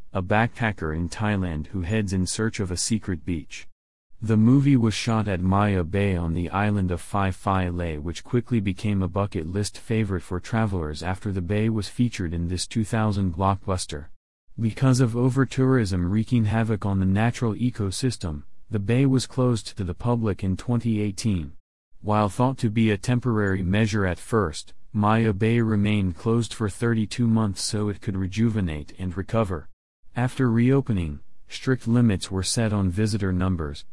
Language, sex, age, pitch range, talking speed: English, male, 30-49, 95-115 Hz, 165 wpm